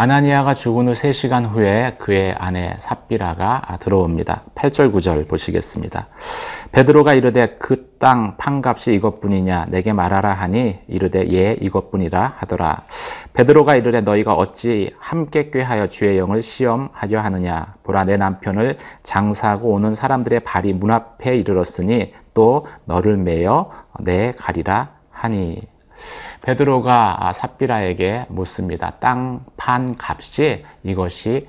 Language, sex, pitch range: Korean, male, 95-125 Hz